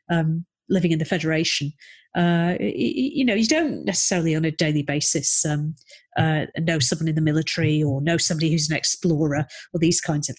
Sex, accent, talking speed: female, British, 190 wpm